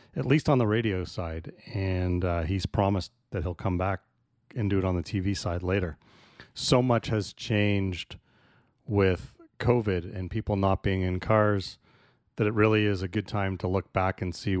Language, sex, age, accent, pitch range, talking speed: English, male, 30-49, American, 95-115 Hz, 190 wpm